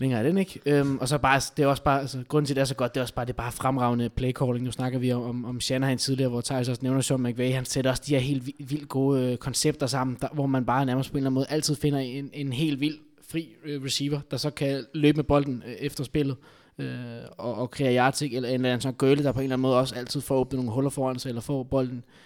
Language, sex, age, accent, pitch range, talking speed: Danish, male, 20-39, native, 125-140 Hz, 300 wpm